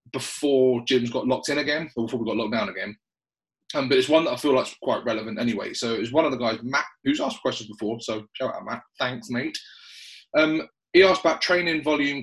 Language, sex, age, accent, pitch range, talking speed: English, male, 30-49, British, 120-155 Hz, 230 wpm